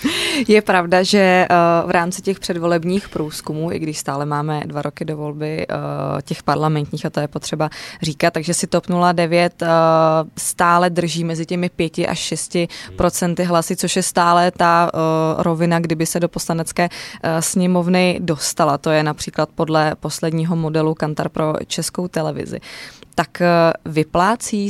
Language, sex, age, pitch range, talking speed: Czech, female, 20-39, 160-180 Hz, 145 wpm